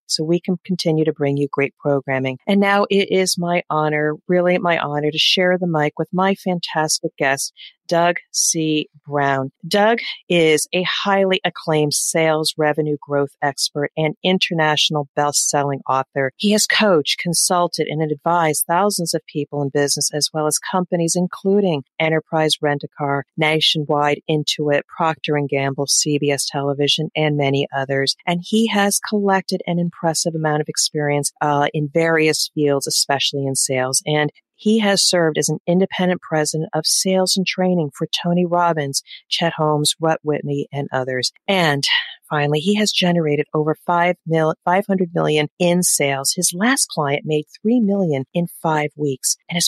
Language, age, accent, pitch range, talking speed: English, 40-59, American, 145-175 Hz, 155 wpm